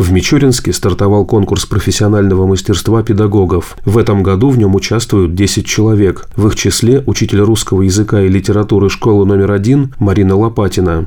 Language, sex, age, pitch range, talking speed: Russian, male, 30-49, 95-110 Hz, 150 wpm